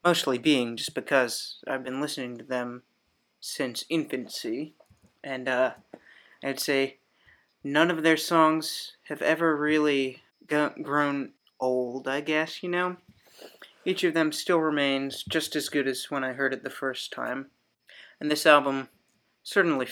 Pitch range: 130-150 Hz